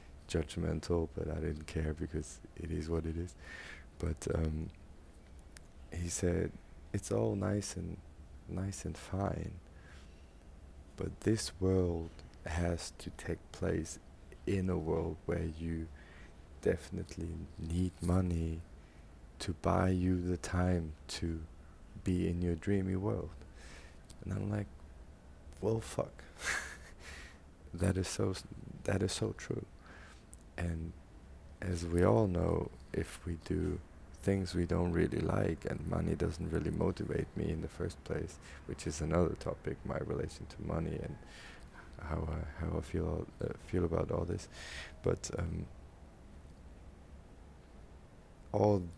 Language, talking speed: English, 130 wpm